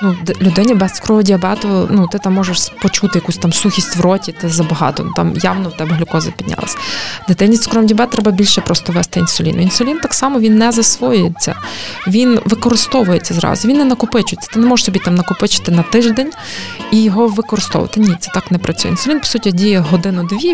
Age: 20-39